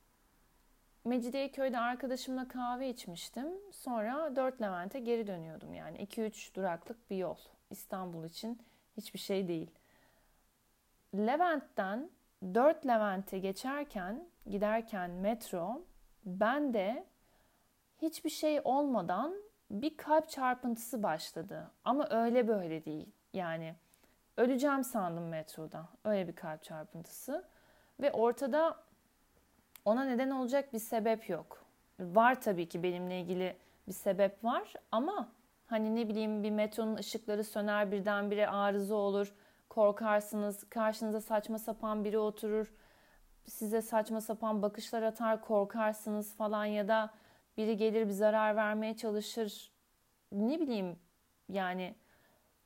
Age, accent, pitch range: 40-59, native, 200-250 Hz